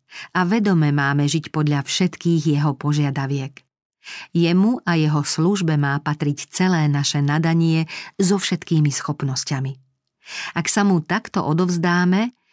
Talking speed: 120 wpm